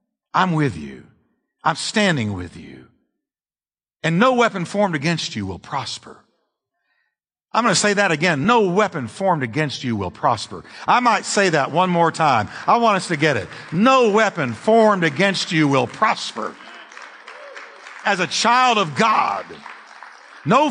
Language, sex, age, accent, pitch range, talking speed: English, male, 50-69, American, 150-215 Hz, 155 wpm